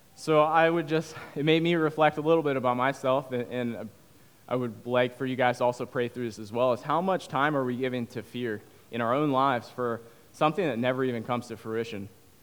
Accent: American